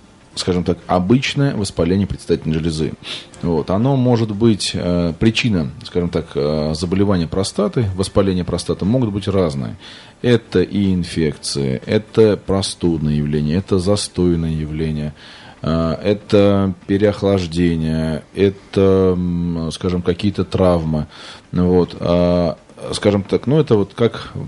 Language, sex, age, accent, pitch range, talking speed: Russian, male, 20-39, native, 85-105 Hz, 115 wpm